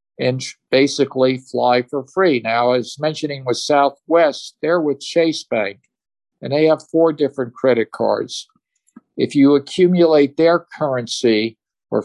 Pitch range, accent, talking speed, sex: 125-150 Hz, American, 135 wpm, male